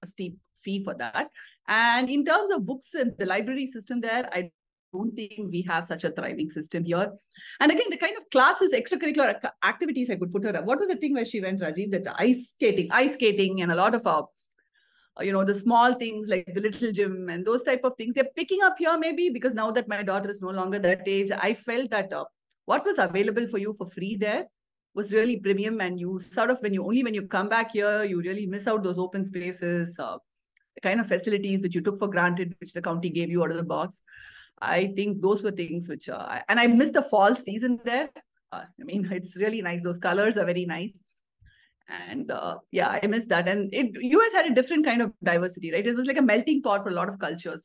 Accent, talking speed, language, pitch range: Indian, 240 wpm, English, 185-250 Hz